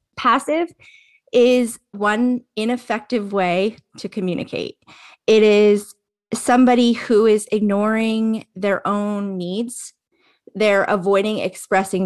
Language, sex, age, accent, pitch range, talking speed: English, female, 20-39, American, 190-245 Hz, 95 wpm